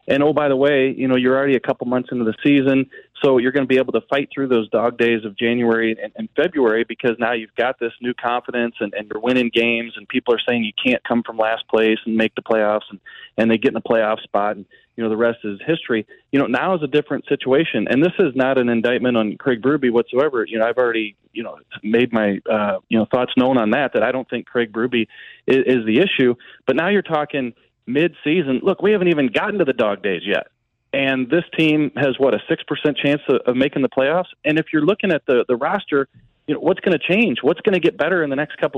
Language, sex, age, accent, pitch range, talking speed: English, male, 30-49, American, 120-145 Hz, 260 wpm